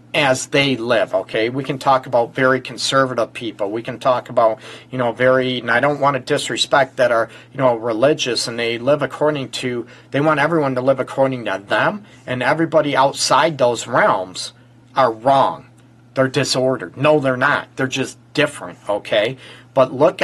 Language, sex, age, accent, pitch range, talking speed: English, male, 40-59, American, 125-145 Hz, 180 wpm